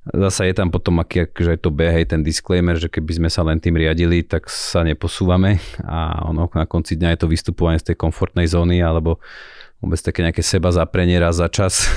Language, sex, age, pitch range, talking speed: Slovak, male, 30-49, 85-100 Hz, 210 wpm